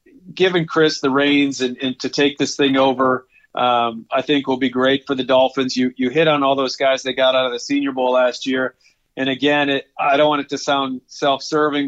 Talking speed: 230 wpm